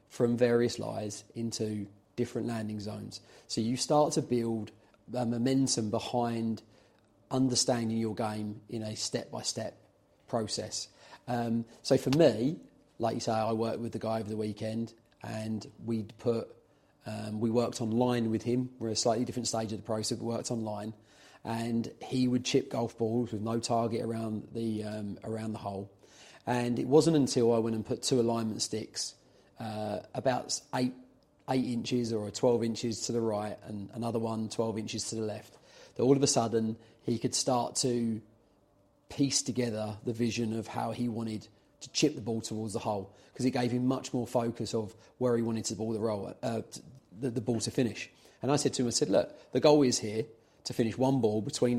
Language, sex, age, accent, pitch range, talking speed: English, male, 30-49, British, 110-125 Hz, 190 wpm